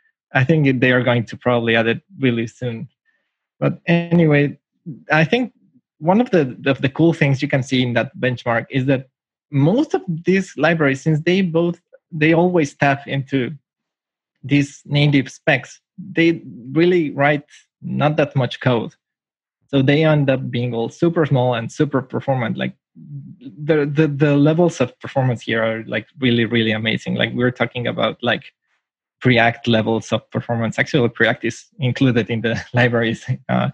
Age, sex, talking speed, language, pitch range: 20-39, male, 165 wpm, English, 120-150 Hz